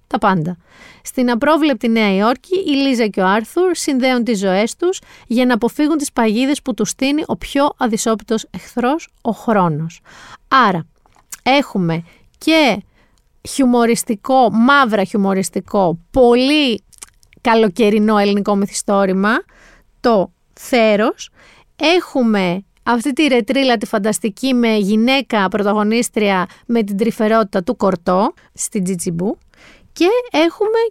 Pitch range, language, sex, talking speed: 205-270 Hz, Greek, female, 115 wpm